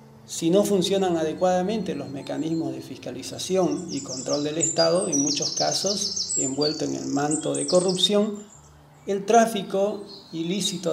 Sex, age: male, 40-59